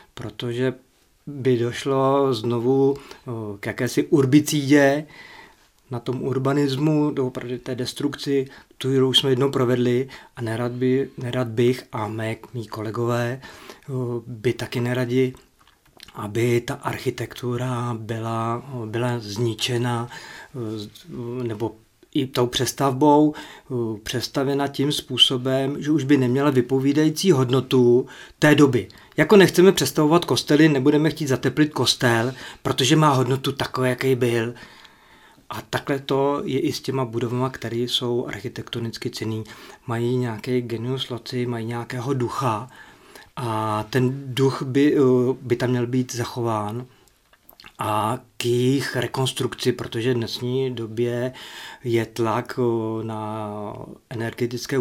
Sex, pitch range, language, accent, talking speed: male, 115-130 Hz, Czech, native, 115 wpm